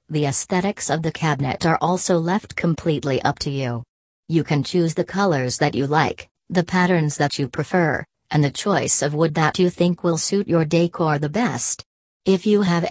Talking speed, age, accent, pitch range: 195 wpm, 40-59, American, 150-180 Hz